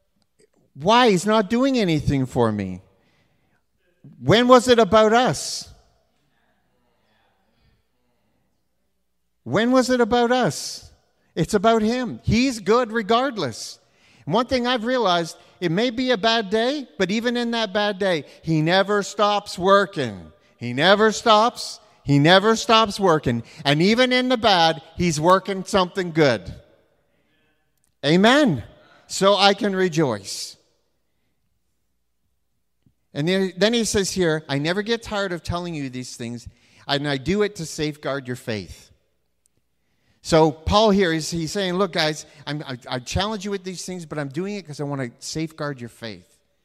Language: English